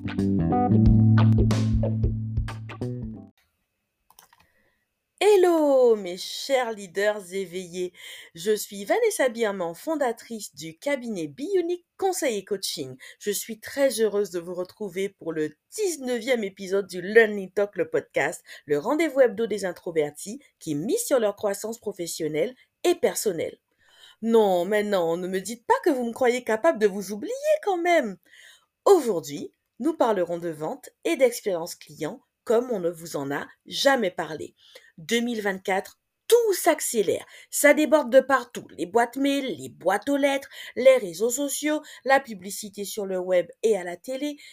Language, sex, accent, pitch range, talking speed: French, female, French, 180-285 Hz, 140 wpm